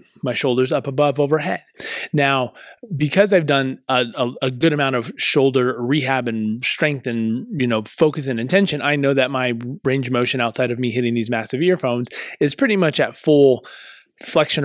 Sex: male